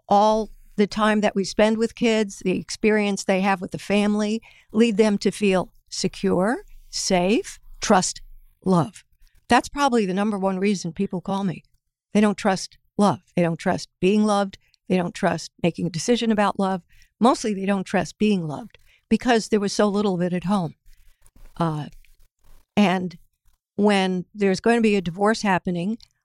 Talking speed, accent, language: 170 wpm, American, English